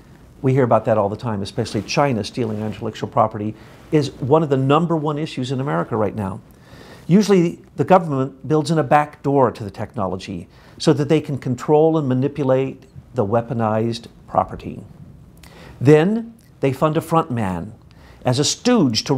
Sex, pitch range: male, 125-165 Hz